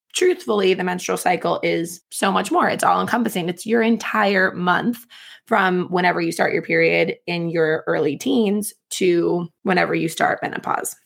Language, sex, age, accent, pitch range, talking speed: English, female, 20-39, American, 180-225 Hz, 165 wpm